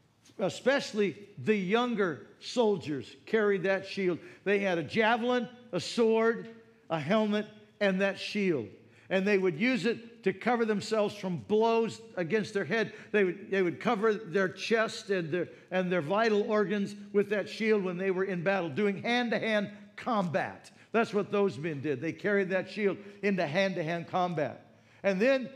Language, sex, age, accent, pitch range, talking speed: English, male, 60-79, American, 180-220 Hz, 155 wpm